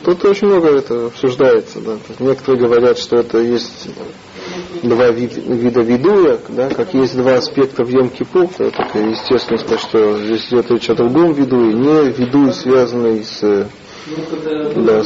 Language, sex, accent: Russian, male, native